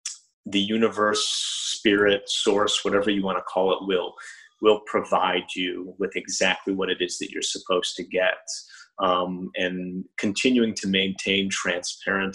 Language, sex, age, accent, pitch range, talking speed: English, male, 30-49, American, 95-100 Hz, 145 wpm